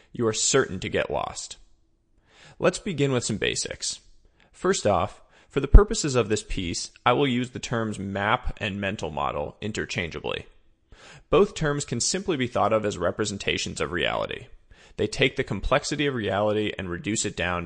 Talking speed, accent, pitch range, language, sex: 170 wpm, American, 105-125 Hz, English, male